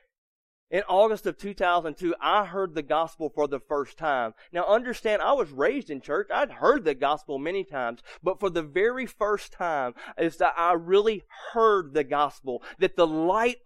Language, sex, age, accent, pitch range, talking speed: English, male, 30-49, American, 180-240 Hz, 175 wpm